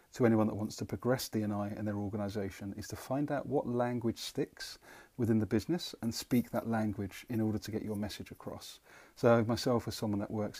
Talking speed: 210 wpm